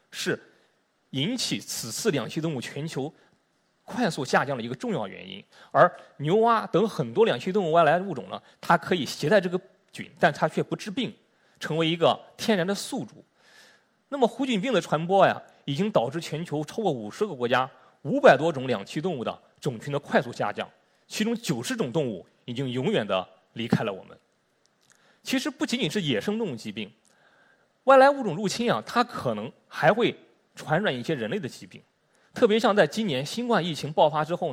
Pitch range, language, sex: 155-220 Hz, Chinese, male